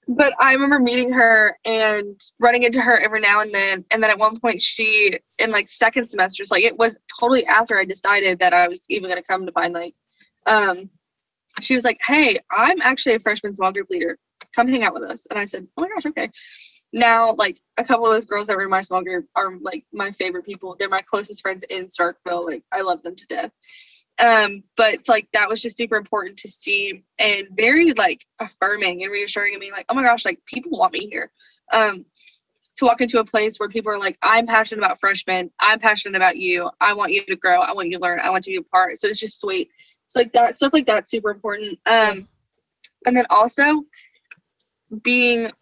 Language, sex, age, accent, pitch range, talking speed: English, female, 10-29, American, 195-240 Hz, 230 wpm